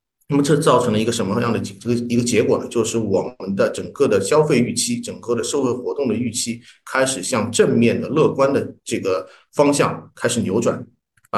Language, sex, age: Chinese, male, 50-69